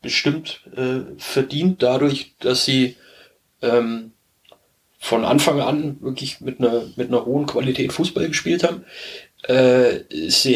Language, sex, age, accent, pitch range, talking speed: German, male, 30-49, German, 125-155 Hz, 125 wpm